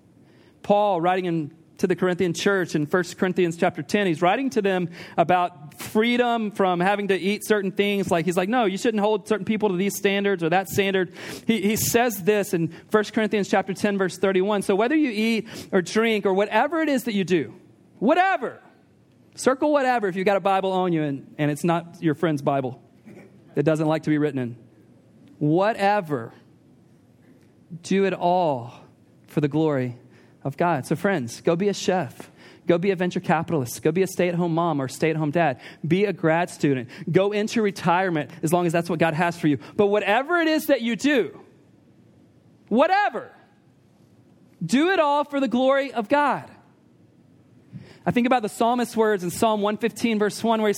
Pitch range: 170-215 Hz